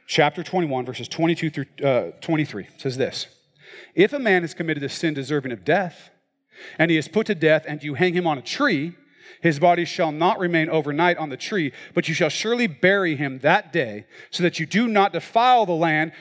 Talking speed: 210 wpm